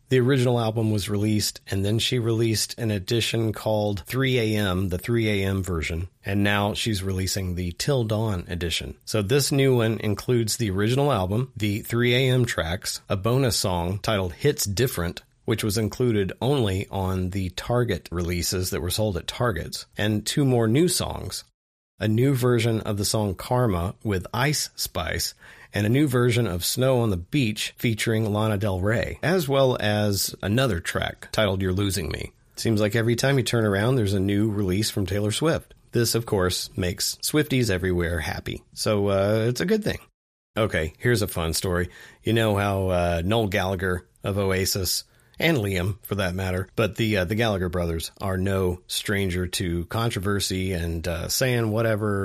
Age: 40-59